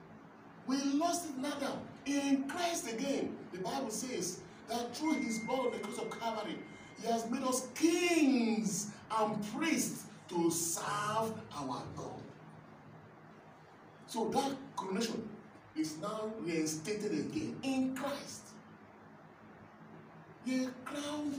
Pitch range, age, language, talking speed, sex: 180-265 Hz, 40-59, English, 115 wpm, male